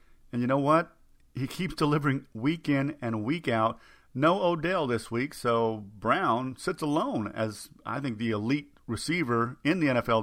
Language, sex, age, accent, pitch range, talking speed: English, male, 50-69, American, 115-150 Hz, 170 wpm